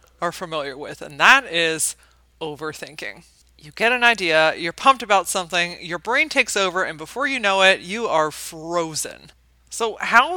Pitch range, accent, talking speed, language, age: 155-220 Hz, American, 170 wpm, English, 20-39